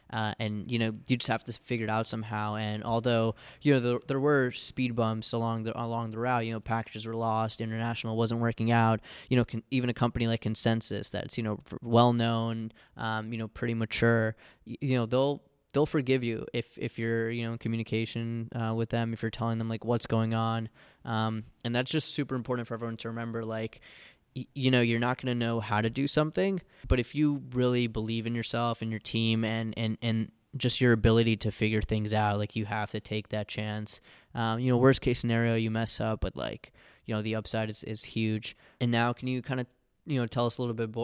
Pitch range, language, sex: 110-120 Hz, English, male